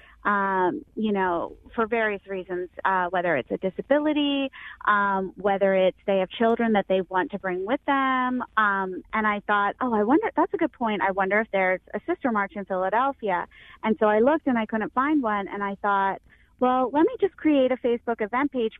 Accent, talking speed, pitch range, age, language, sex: American, 210 wpm, 195-230 Hz, 30-49, English, female